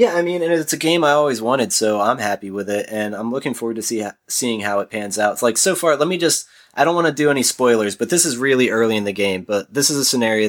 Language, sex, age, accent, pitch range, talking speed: English, male, 20-39, American, 105-145 Hz, 310 wpm